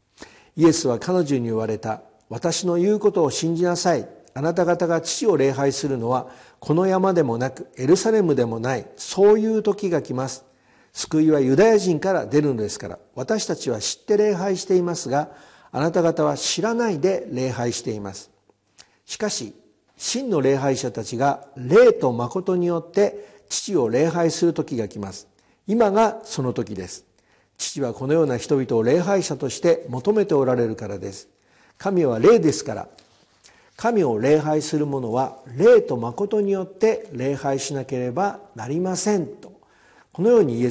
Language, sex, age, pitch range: Japanese, male, 50-69, 125-180 Hz